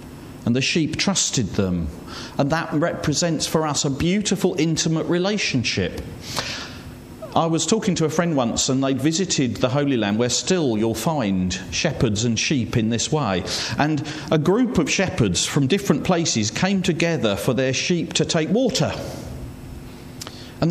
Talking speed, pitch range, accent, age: 155 wpm, 125-170 Hz, British, 40-59